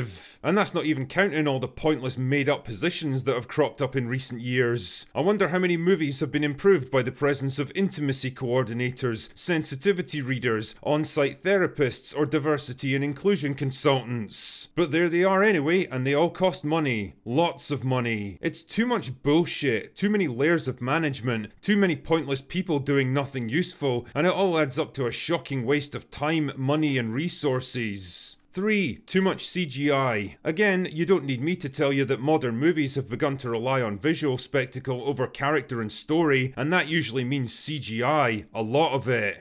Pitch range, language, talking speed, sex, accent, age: 130-165 Hz, English, 180 wpm, male, British, 30-49